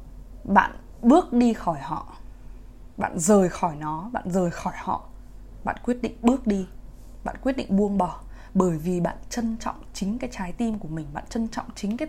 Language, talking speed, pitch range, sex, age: Vietnamese, 195 wpm, 170-235 Hz, female, 20-39